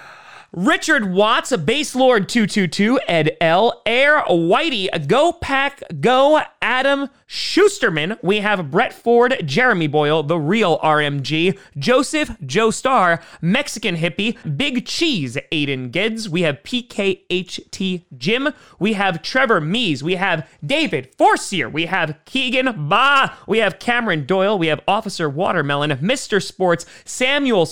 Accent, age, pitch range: American, 30-49, 160-245 Hz